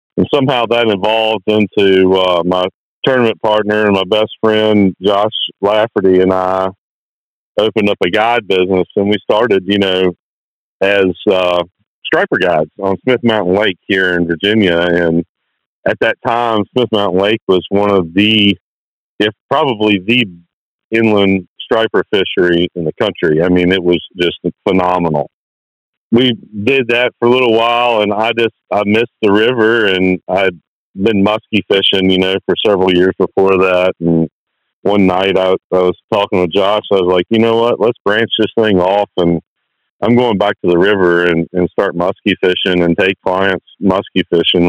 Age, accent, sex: 40-59, American, male